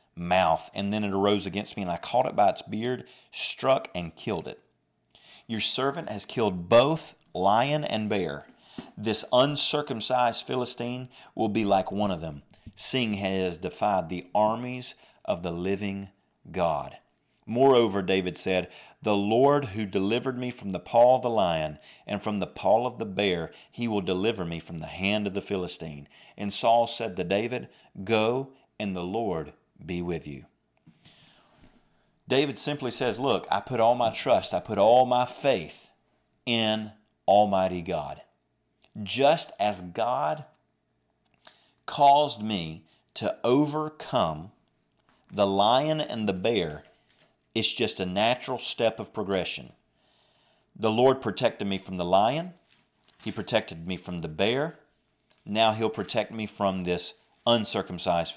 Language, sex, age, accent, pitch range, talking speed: English, male, 40-59, American, 95-125 Hz, 145 wpm